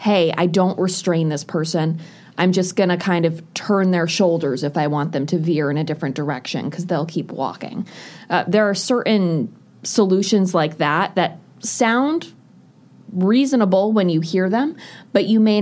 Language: English